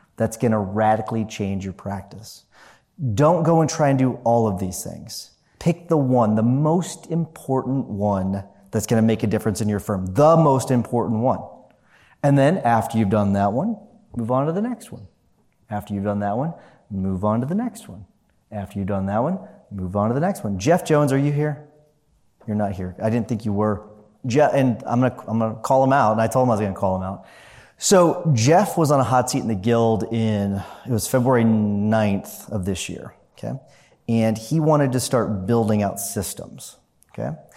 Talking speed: 210 wpm